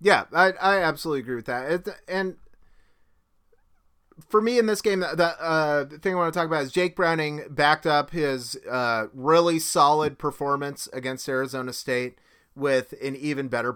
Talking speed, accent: 180 wpm, American